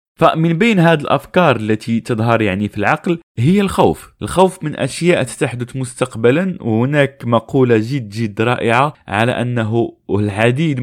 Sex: male